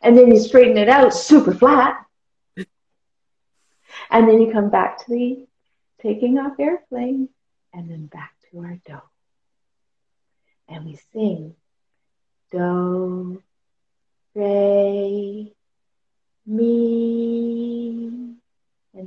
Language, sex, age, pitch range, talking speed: English, female, 40-59, 190-230 Hz, 100 wpm